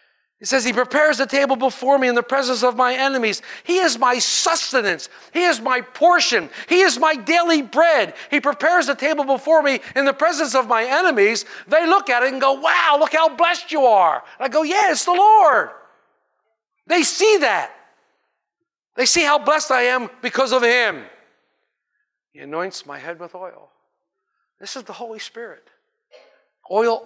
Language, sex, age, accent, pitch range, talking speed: English, male, 50-69, American, 220-325 Hz, 180 wpm